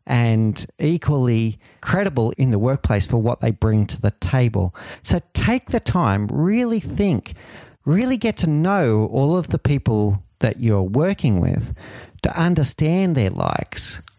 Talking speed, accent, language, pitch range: 150 wpm, Australian, English, 105-145 Hz